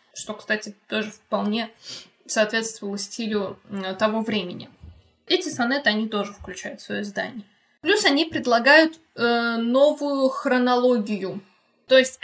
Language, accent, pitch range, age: Russian, native, 225-290 Hz, 20-39